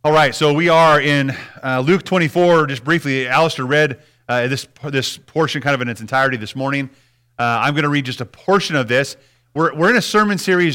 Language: English